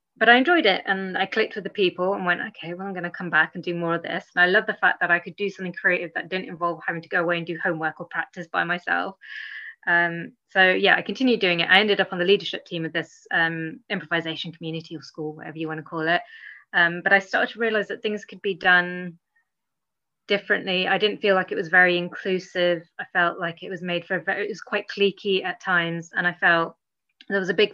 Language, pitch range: English, 170-200 Hz